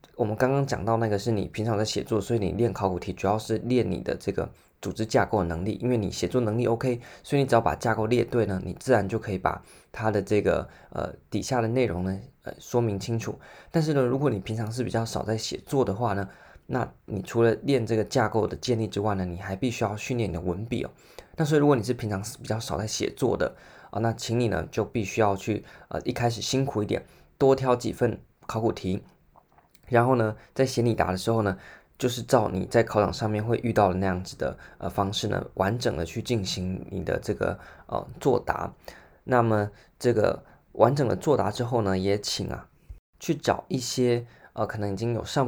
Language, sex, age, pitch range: Chinese, male, 20-39, 100-120 Hz